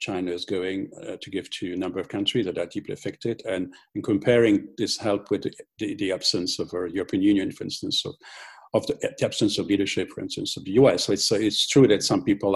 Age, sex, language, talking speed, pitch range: 50-69, male, English, 240 wpm, 100-140 Hz